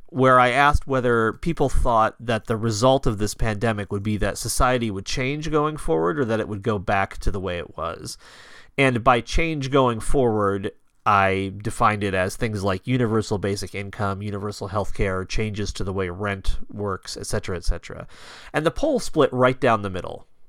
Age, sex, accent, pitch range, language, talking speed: 30-49, male, American, 100-130 Hz, English, 195 wpm